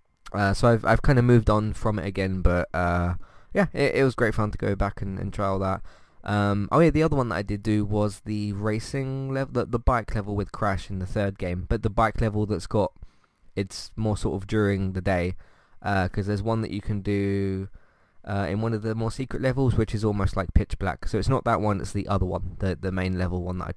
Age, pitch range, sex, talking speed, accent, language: 20-39, 95-115 Hz, male, 260 wpm, British, English